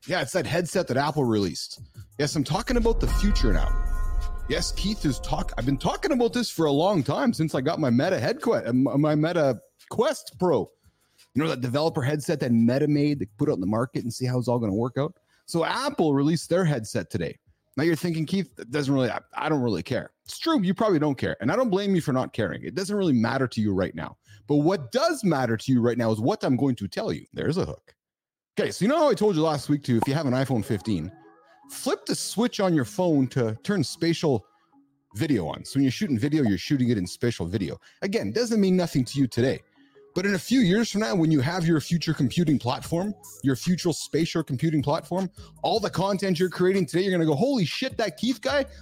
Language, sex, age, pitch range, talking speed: English, male, 30-49, 130-185 Hz, 245 wpm